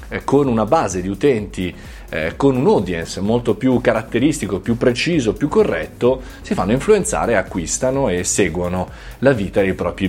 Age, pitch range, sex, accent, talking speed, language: 20-39, 95-130 Hz, male, native, 155 wpm, Italian